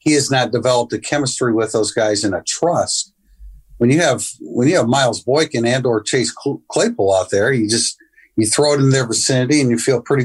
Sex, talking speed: male, 220 wpm